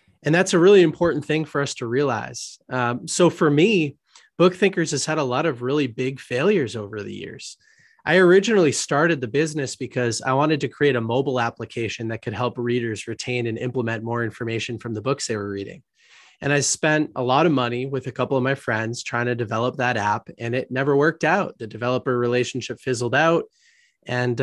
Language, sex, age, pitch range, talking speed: English, male, 20-39, 125-155 Hz, 205 wpm